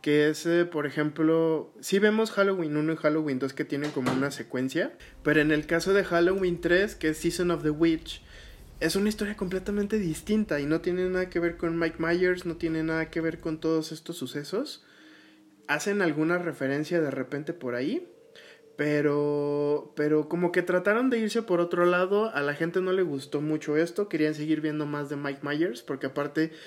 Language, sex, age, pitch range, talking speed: Spanish, male, 20-39, 140-170 Hz, 195 wpm